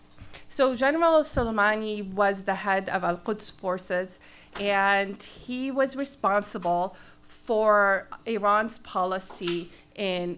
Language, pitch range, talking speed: English, 195-230 Hz, 100 wpm